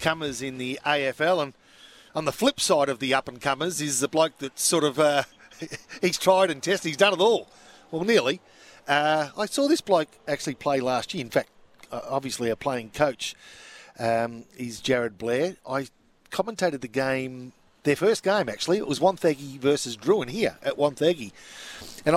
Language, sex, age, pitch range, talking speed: English, male, 50-69, 125-160 Hz, 185 wpm